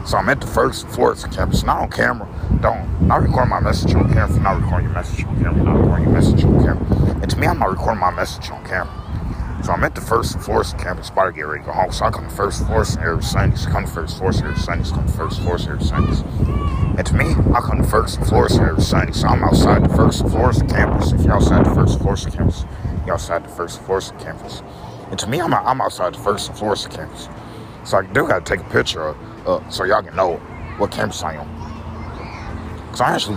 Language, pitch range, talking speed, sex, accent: English, 80-105 Hz, 245 wpm, male, American